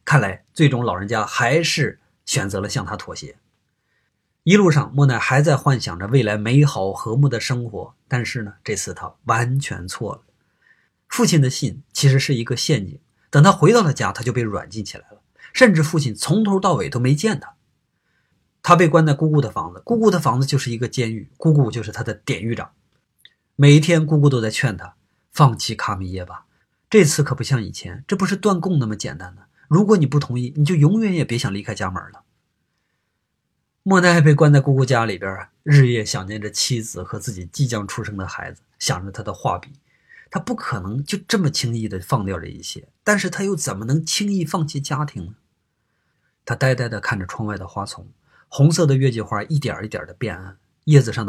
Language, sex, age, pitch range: Chinese, male, 20-39, 110-155 Hz